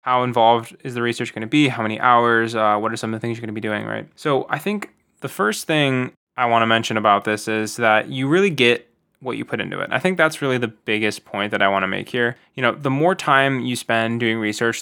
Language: English